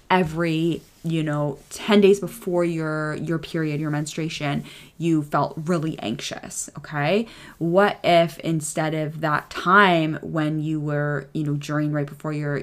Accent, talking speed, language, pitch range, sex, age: American, 145 wpm, English, 140-160 Hz, female, 20-39